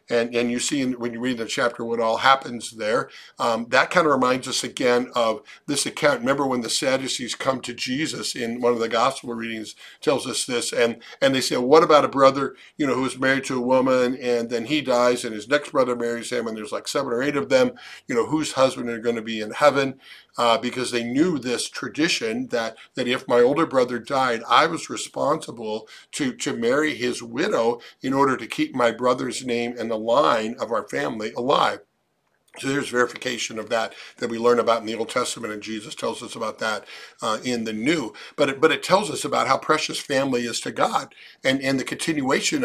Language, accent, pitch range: English, American, 115-135 Hz